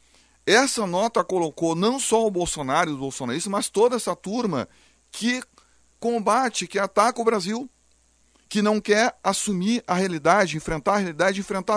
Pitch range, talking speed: 145-220 Hz, 155 wpm